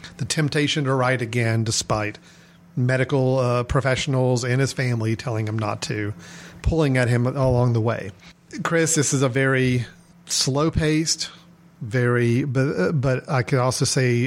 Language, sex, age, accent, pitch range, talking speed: English, male, 40-59, American, 125-155 Hz, 150 wpm